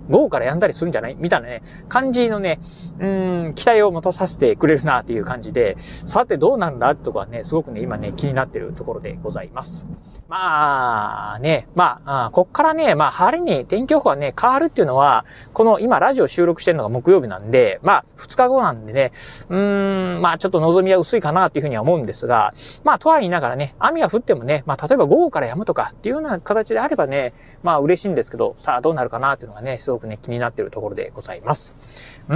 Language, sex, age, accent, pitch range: Japanese, male, 30-49, native, 130-220 Hz